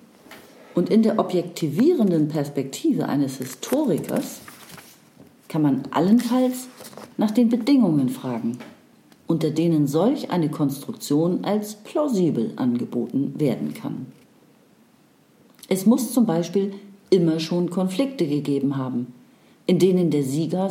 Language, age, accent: German, 40-59, German